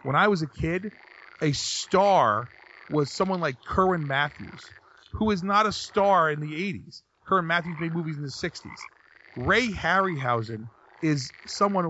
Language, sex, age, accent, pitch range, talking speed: English, male, 30-49, American, 135-180 Hz, 155 wpm